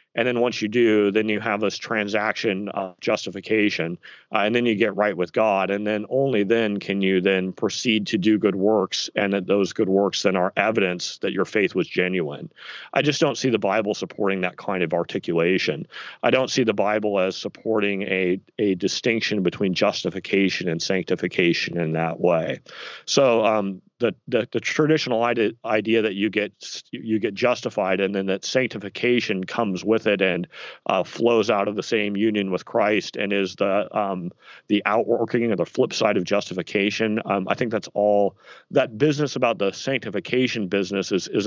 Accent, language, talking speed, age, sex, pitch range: American, English, 185 wpm, 40-59, male, 95-120 Hz